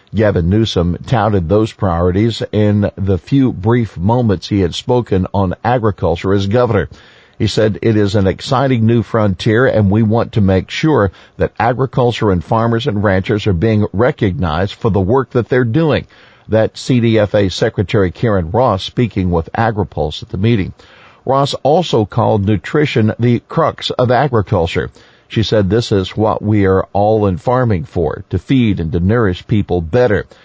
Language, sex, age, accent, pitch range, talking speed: English, male, 50-69, American, 95-120 Hz, 165 wpm